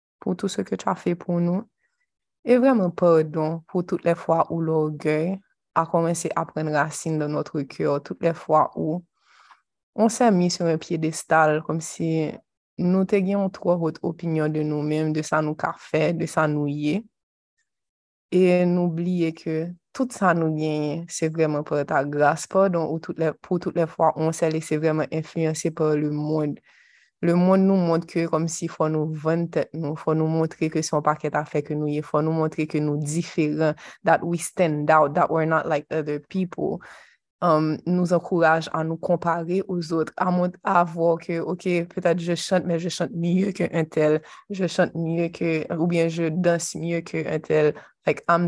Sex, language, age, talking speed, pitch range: female, French, 20-39, 195 wpm, 155-175 Hz